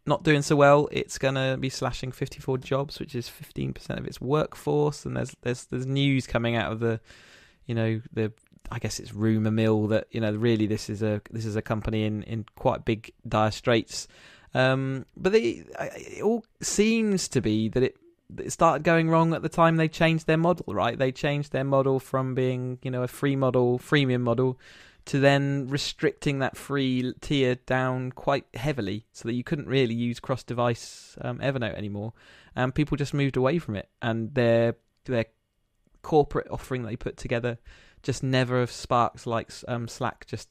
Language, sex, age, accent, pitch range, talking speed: English, male, 20-39, British, 115-140 Hz, 195 wpm